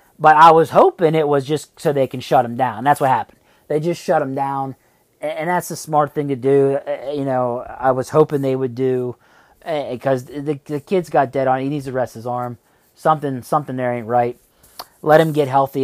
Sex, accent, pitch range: male, American, 125-145 Hz